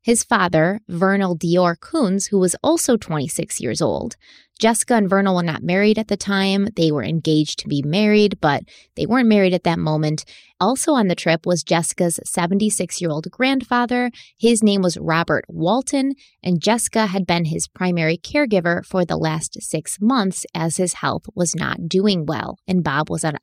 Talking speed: 175 wpm